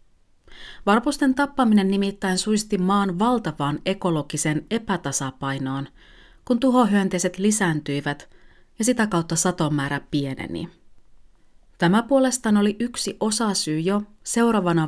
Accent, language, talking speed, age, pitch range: native, Finnish, 95 wpm, 30-49, 165-225 Hz